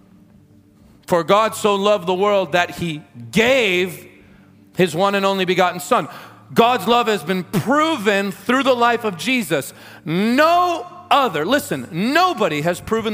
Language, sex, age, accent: English, male, 40-59, American